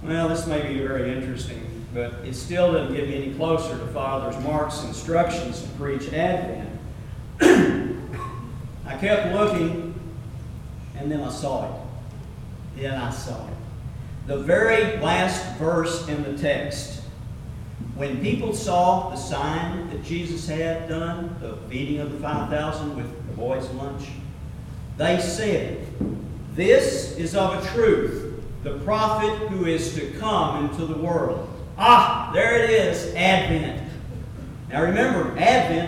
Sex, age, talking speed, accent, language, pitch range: male, 50-69, 135 wpm, American, English, 130-180 Hz